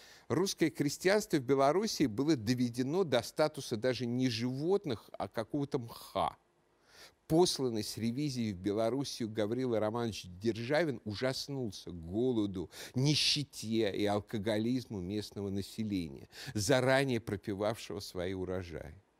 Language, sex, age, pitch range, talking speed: Russian, male, 50-69, 105-145 Hz, 105 wpm